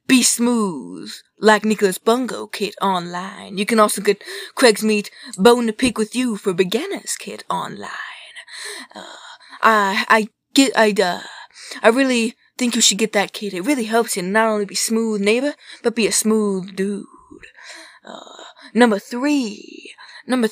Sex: female